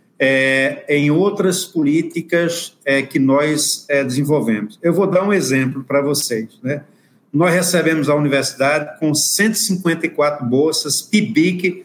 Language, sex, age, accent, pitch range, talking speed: Portuguese, male, 50-69, Brazilian, 135-175 Hz, 125 wpm